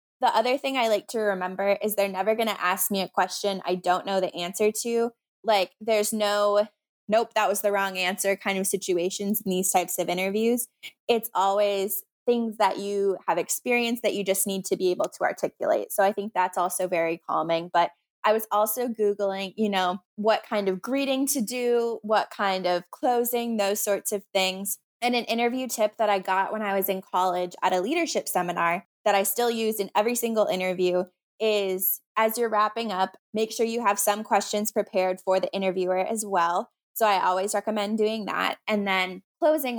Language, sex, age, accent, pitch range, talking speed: English, female, 20-39, American, 185-220 Hz, 200 wpm